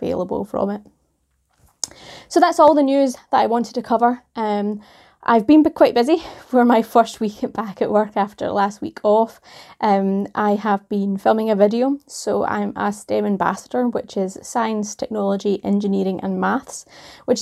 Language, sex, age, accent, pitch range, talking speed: English, female, 20-39, British, 195-235 Hz, 170 wpm